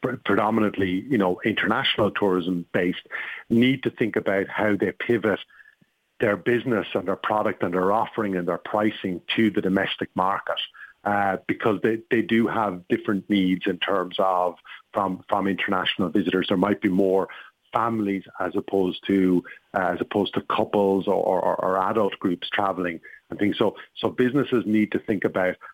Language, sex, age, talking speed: English, male, 50-69, 165 wpm